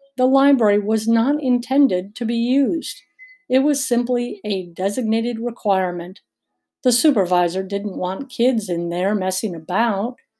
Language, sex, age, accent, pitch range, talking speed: English, female, 50-69, American, 185-250 Hz, 135 wpm